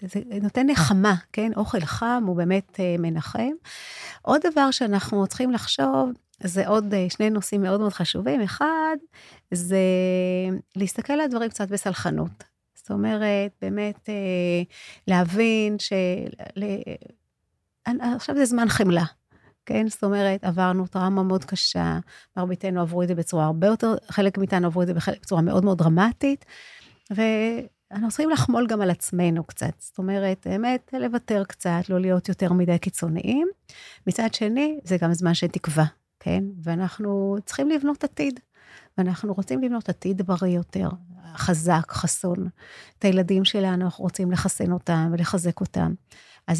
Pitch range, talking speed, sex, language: 180-215 Hz, 145 wpm, female, Hebrew